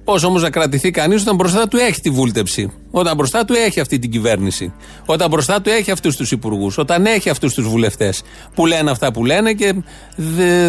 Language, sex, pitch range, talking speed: Greek, male, 120-175 Hz, 210 wpm